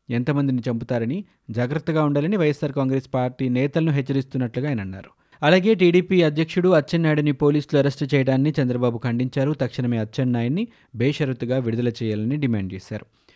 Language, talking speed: Telugu, 120 wpm